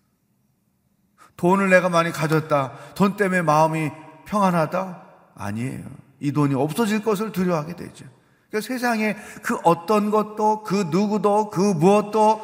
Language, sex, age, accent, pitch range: Korean, male, 30-49, native, 140-195 Hz